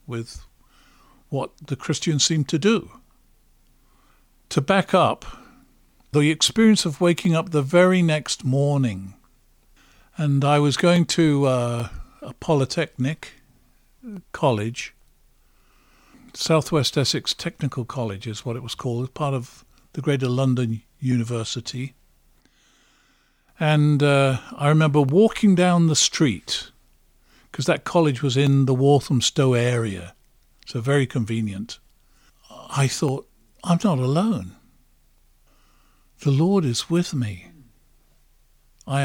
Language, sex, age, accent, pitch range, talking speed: English, male, 50-69, British, 125-165 Hz, 110 wpm